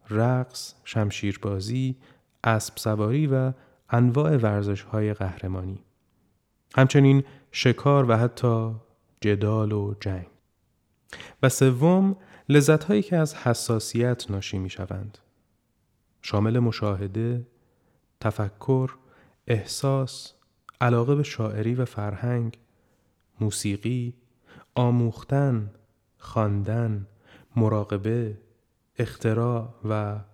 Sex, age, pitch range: male, 30-49, 105-130 Hz